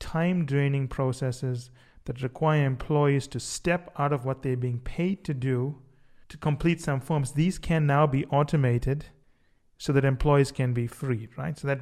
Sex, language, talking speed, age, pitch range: male, English, 175 wpm, 30-49, 130-160 Hz